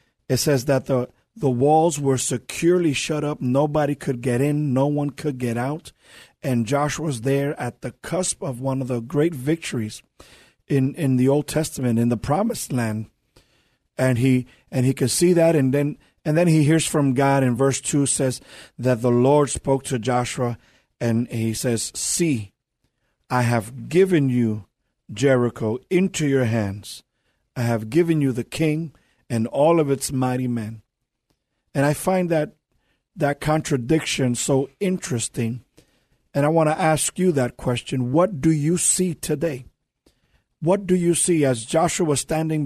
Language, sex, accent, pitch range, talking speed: English, male, American, 125-155 Hz, 165 wpm